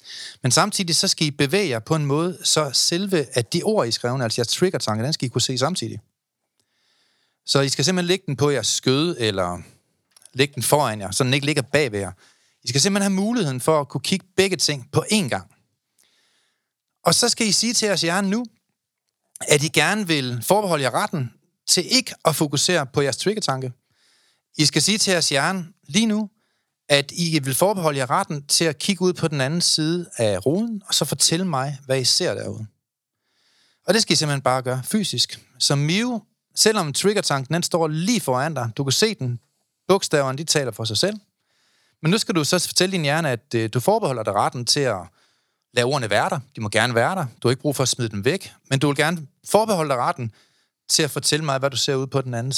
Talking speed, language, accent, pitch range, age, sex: 220 wpm, Danish, native, 130-180 Hz, 30-49, male